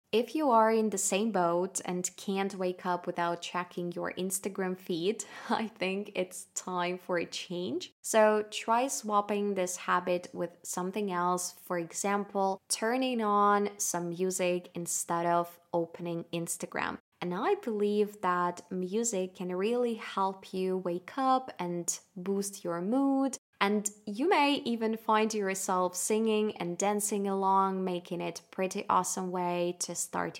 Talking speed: 145 wpm